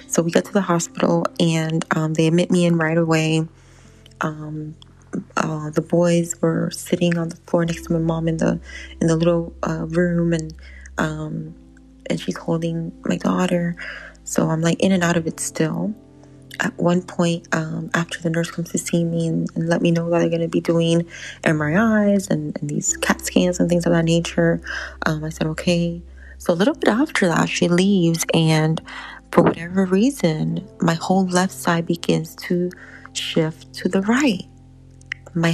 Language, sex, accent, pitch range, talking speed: English, female, American, 165-205 Hz, 185 wpm